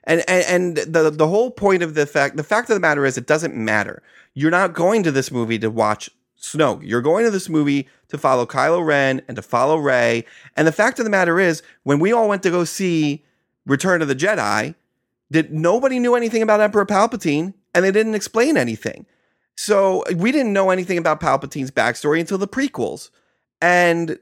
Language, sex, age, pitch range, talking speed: English, male, 30-49, 130-190 Hz, 205 wpm